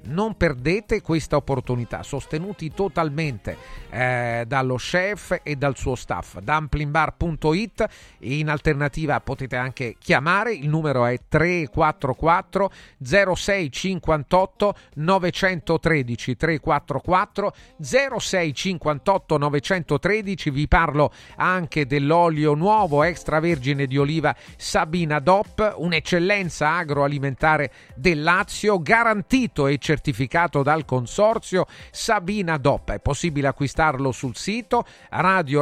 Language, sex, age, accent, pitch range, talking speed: Italian, male, 40-59, native, 140-185 Hz, 85 wpm